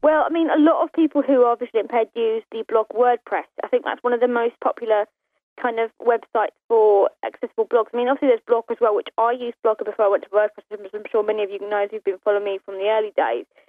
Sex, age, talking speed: female, 20-39, 265 wpm